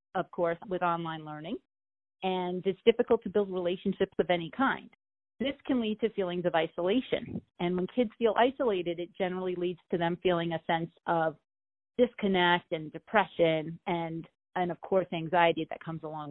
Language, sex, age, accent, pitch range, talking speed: English, female, 40-59, American, 175-210 Hz, 170 wpm